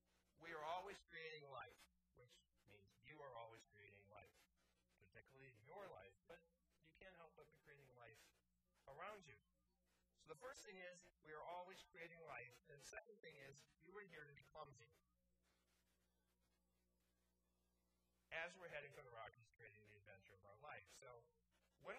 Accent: American